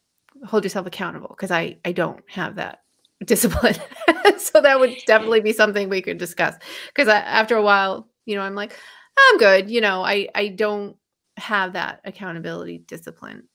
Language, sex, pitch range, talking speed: English, female, 180-220 Hz, 175 wpm